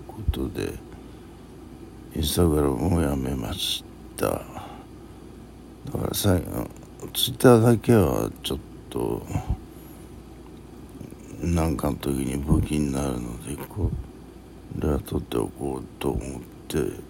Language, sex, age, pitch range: Japanese, male, 60-79, 75-95 Hz